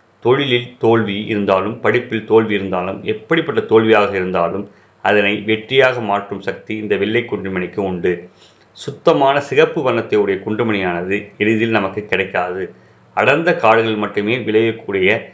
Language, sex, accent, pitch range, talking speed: Tamil, male, native, 100-115 Hz, 110 wpm